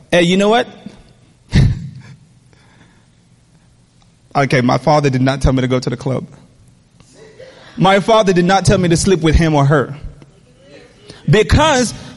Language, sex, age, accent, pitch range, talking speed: English, male, 30-49, American, 140-210 Hz, 145 wpm